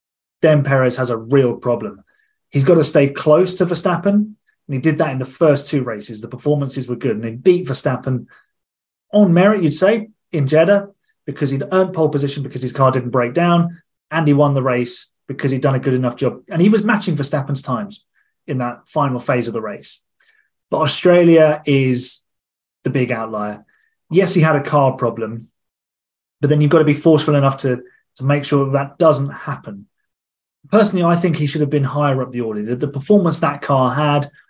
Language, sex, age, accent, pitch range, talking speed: English, male, 30-49, British, 125-160 Hz, 205 wpm